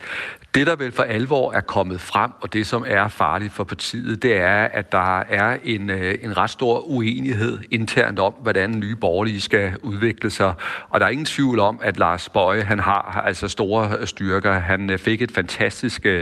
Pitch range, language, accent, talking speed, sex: 95-115 Hz, Danish, native, 190 wpm, male